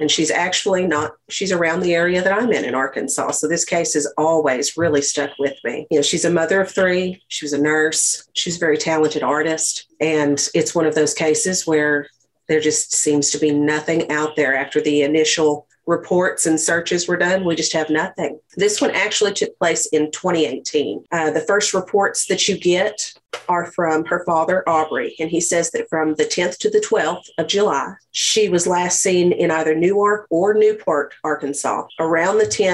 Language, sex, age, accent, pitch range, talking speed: English, female, 40-59, American, 155-190 Hz, 200 wpm